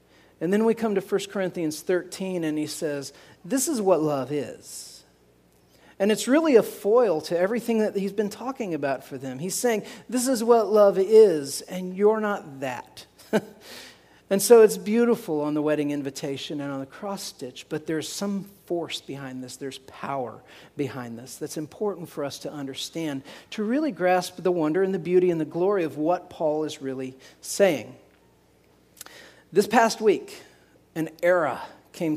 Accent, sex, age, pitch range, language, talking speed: American, male, 40-59, 135-195 Hz, English, 175 wpm